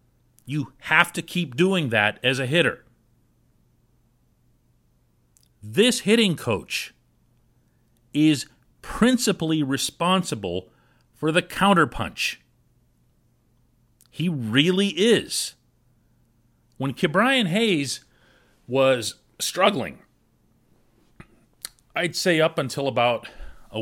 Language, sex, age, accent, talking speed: English, male, 40-59, American, 80 wpm